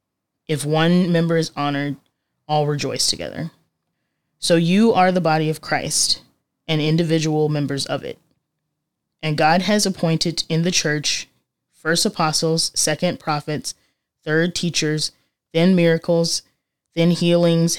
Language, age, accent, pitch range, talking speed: English, 20-39, American, 150-170 Hz, 125 wpm